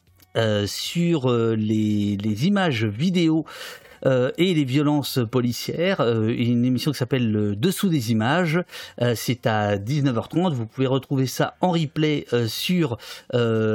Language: French